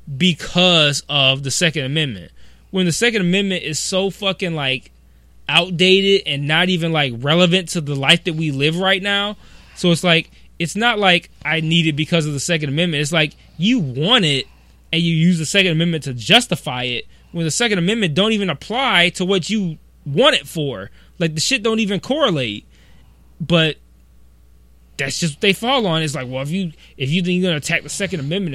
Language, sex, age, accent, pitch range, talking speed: English, male, 20-39, American, 135-195 Hz, 200 wpm